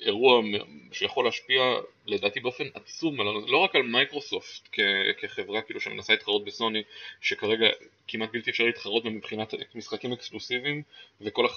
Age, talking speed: 20-39, 130 wpm